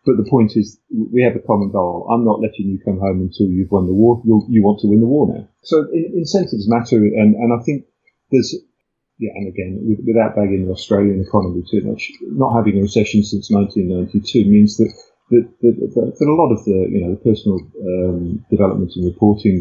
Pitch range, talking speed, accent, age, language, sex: 95-110 Hz, 215 wpm, British, 30-49, English, male